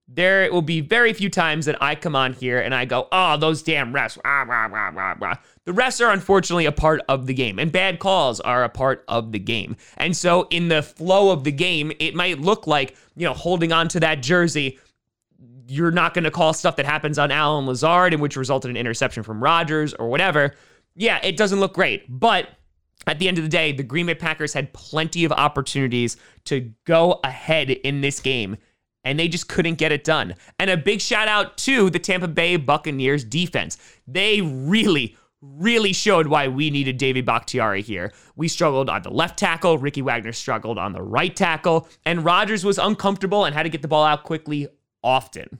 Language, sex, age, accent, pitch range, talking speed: English, male, 20-39, American, 135-175 Hz, 210 wpm